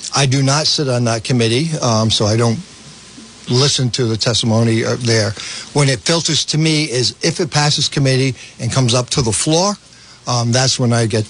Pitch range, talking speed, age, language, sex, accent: 115-135 Hz, 195 wpm, 60-79, English, male, American